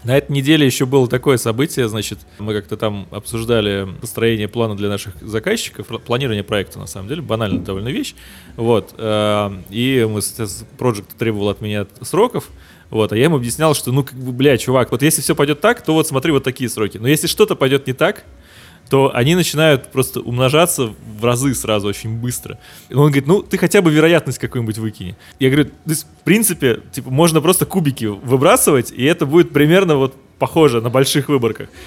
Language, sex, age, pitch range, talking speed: Russian, male, 20-39, 110-140 Hz, 190 wpm